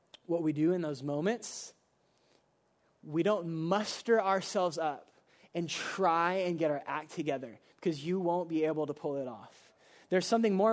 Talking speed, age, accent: 170 wpm, 20-39, American